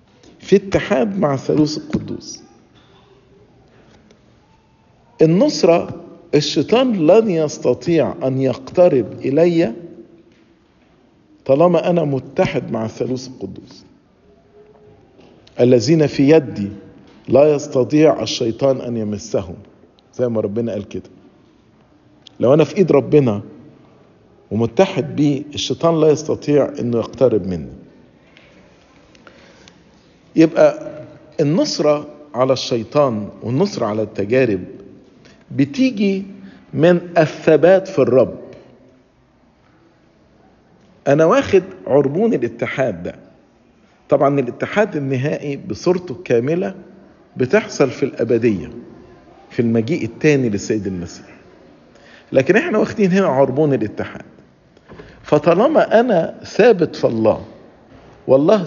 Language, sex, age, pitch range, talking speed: English, male, 50-69, 125-170 Hz, 90 wpm